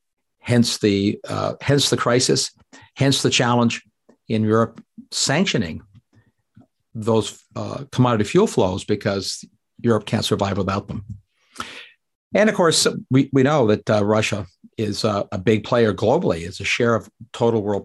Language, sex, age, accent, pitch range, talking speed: English, male, 60-79, American, 110-140 Hz, 150 wpm